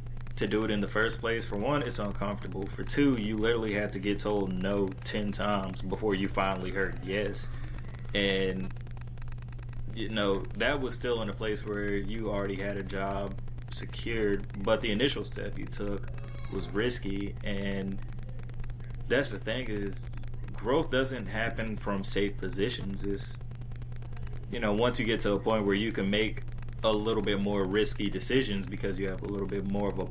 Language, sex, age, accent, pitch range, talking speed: English, male, 20-39, American, 100-120 Hz, 180 wpm